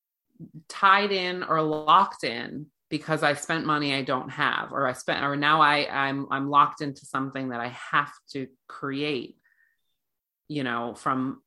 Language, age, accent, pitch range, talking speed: English, 30-49, American, 135-185 Hz, 160 wpm